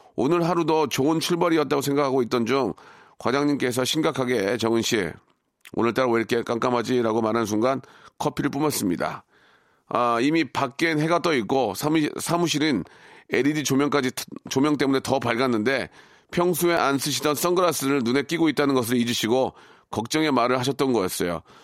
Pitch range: 120-150 Hz